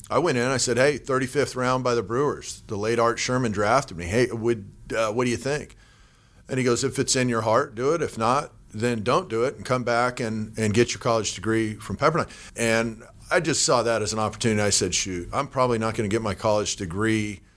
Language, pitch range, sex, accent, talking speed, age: English, 105-125 Hz, male, American, 245 wpm, 40-59